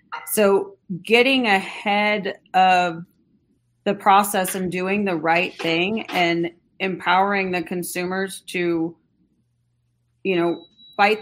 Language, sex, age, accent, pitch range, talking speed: English, female, 30-49, American, 185-230 Hz, 100 wpm